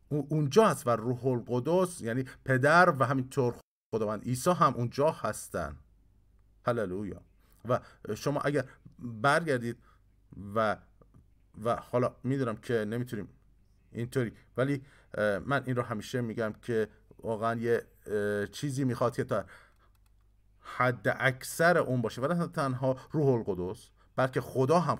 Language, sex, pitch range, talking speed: Persian, male, 100-145 Hz, 120 wpm